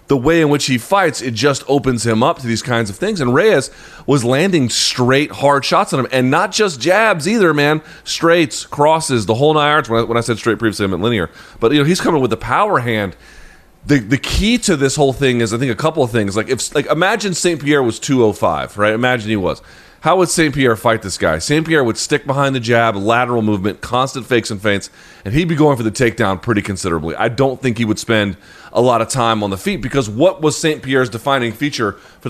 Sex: male